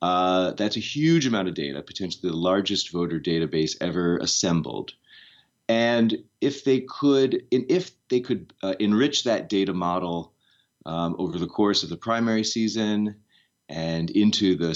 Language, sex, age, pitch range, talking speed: English, male, 30-49, 90-110 Hz, 155 wpm